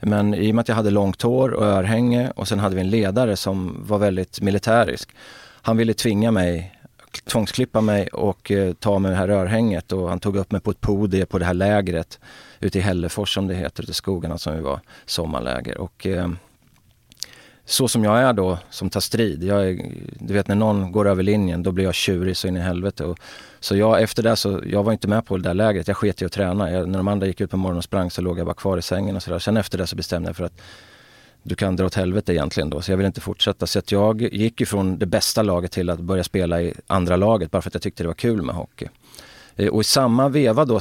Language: Swedish